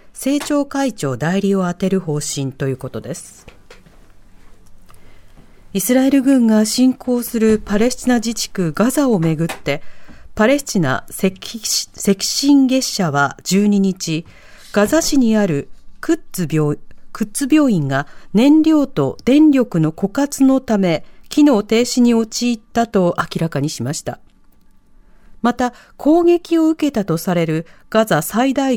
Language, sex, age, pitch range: Japanese, female, 40-59, 170-255 Hz